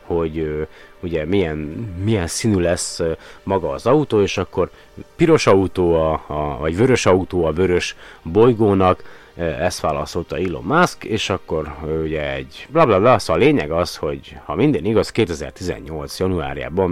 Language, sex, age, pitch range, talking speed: Hungarian, male, 30-49, 80-100 Hz, 165 wpm